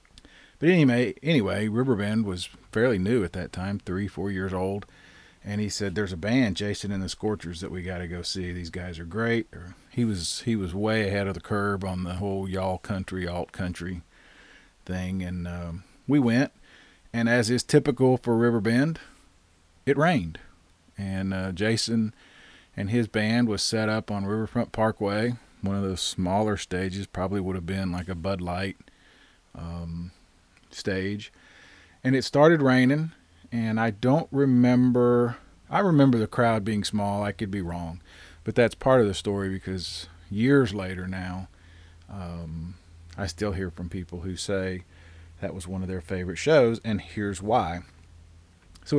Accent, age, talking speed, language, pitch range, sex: American, 40-59, 170 wpm, English, 90-115 Hz, male